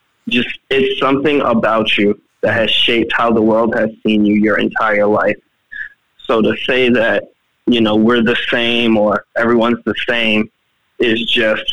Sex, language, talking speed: male, English, 165 wpm